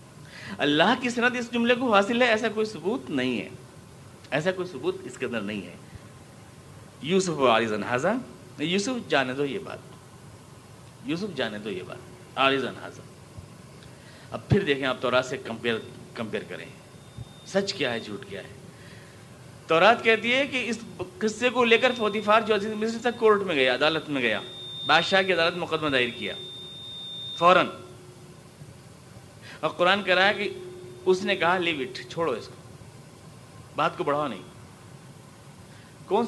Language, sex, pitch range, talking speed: Urdu, male, 130-210 Hz, 155 wpm